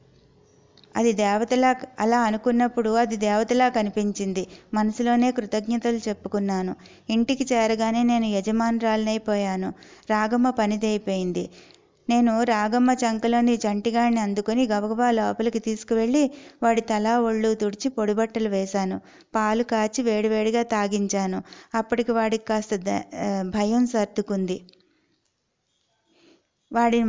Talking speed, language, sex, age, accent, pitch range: 90 wpm, Telugu, female, 20-39, native, 210-240 Hz